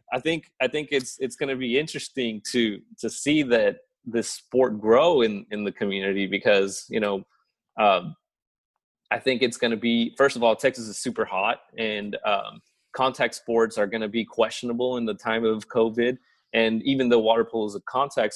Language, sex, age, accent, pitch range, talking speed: English, male, 30-49, American, 105-130 Hz, 195 wpm